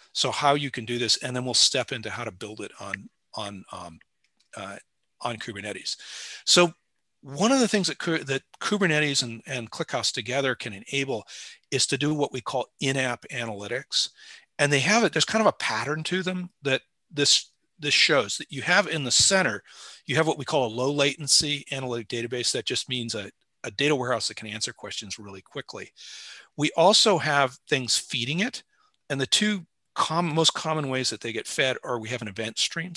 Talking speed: 200 wpm